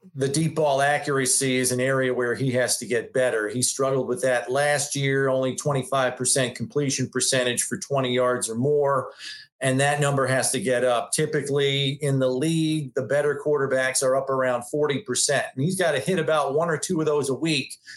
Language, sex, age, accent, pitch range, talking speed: English, male, 40-59, American, 130-155 Hz, 195 wpm